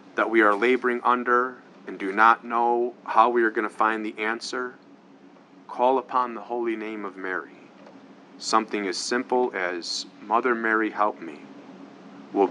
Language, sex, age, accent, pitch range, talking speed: English, male, 30-49, American, 105-125 Hz, 160 wpm